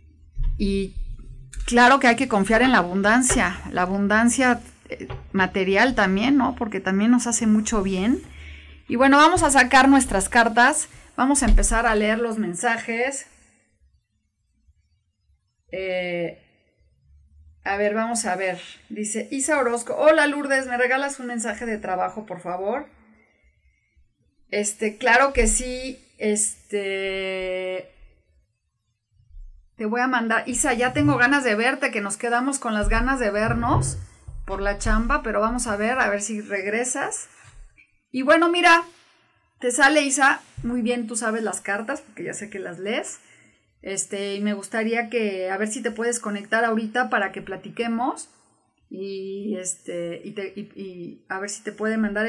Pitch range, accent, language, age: 190-245 Hz, Mexican, Spanish, 30-49